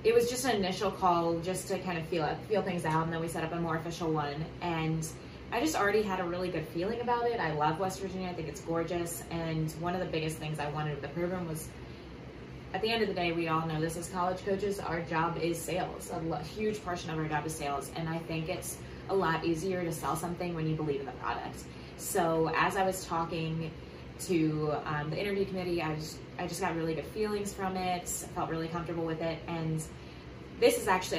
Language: English